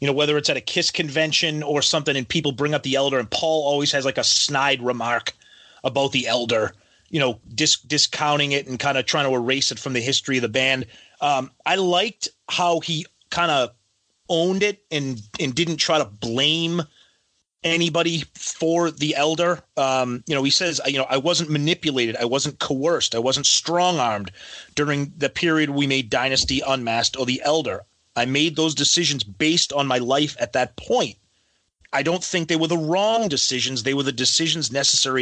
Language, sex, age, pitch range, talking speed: English, male, 30-49, 130-170 Hz, 195 wpm